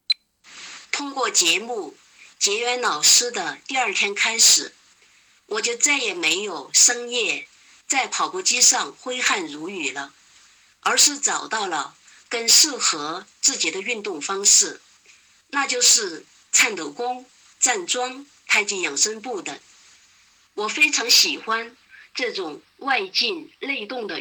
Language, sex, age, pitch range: Chinese, female, 50-69, 235-370 Hz